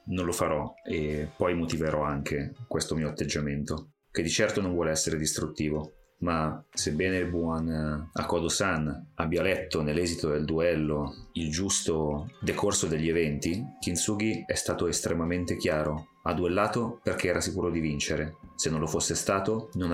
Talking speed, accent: 155 wpm, native